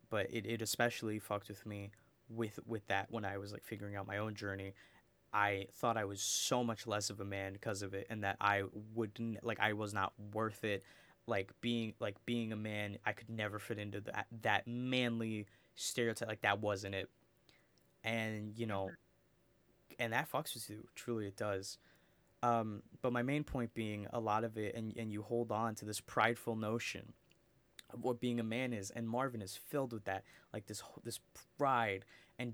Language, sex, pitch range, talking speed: English, male, 105-120 Hz, 200 wpm